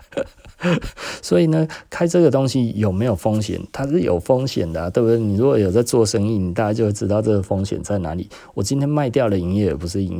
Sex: male